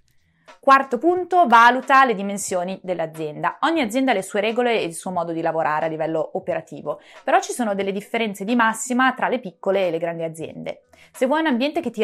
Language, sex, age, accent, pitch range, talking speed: Italian, female, 20-39, native, 185-240 Hz, 205 wpm